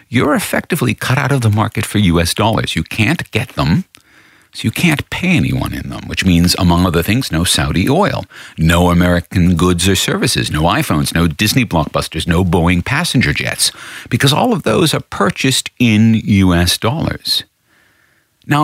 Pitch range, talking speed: 90-140 Hz, 170 wpm